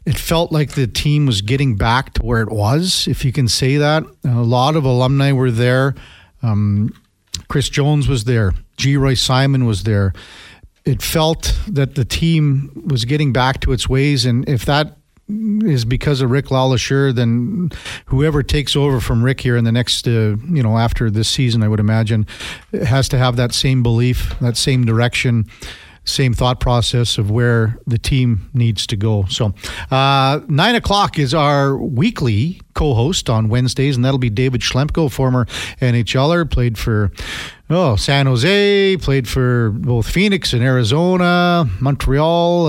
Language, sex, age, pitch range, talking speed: English, male, 50-69, 115-145 Hz, 165 wpm